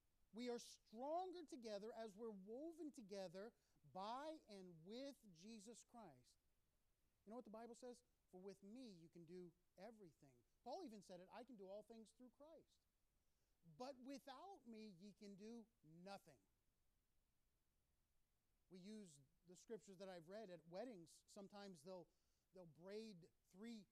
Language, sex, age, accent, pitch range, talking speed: English, male, 40-59, American, 175-240 Hz, 145 wpm